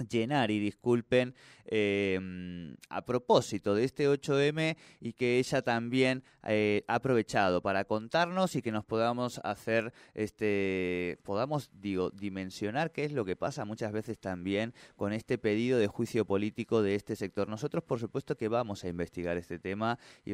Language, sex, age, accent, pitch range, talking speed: Spanish, male, 20-39, Argentinian, 95-120 Hz, 160 wpm